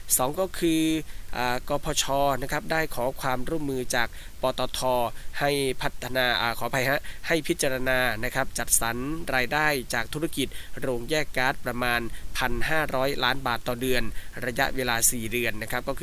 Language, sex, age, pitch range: Thai, male, 20-39, 120-140 Hz